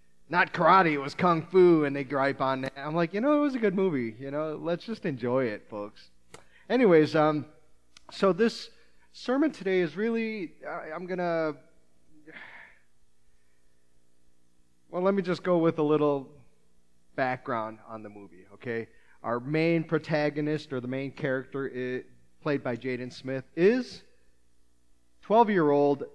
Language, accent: English, American